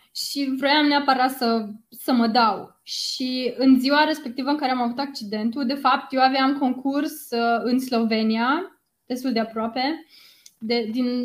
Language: Romanian